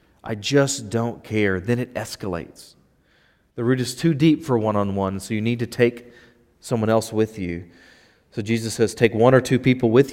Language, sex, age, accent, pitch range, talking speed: English, male, 30-49, American, 115-165 Hz, 190 wpm